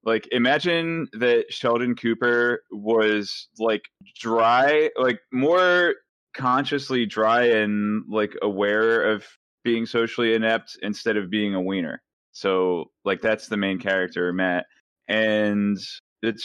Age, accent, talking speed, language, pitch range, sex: 20-39, American, 120 wpm, English, 100-120 Hz, male